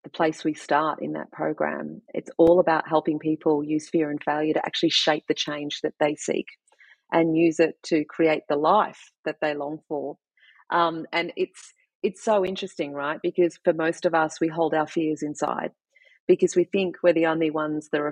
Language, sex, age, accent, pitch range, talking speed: English, female, 40-59, Australian, 155-175 Hz, 200 wpm